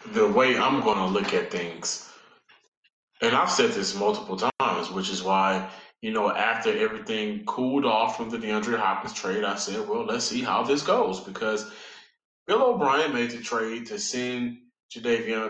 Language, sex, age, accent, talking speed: English, male, 20-39, American, 175 wpm